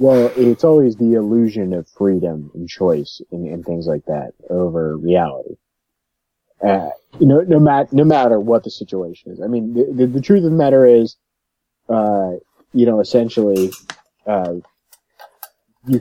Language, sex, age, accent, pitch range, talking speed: English, male, 30-49, American, 95-120 Hz, 160 wpm